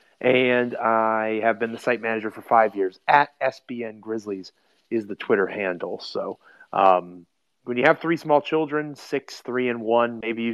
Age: 30-49